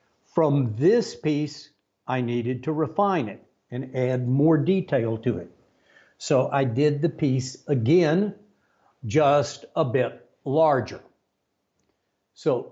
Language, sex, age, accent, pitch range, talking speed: English, male, 60-79, American, 120-155 Hz, 120 wpm